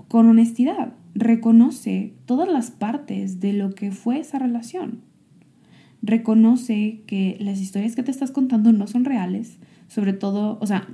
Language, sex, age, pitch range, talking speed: Spanish, female, 20-39, 190-230 Hz, 150 wpm